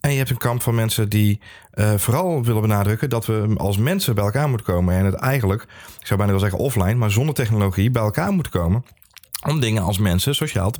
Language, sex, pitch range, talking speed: Dutch, male, 100-120 Hz, 235 wpm